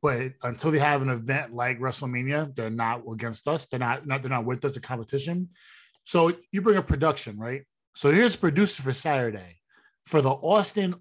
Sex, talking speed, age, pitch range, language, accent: male, 195 wpm, 20-39, 115-145 Hz, English, American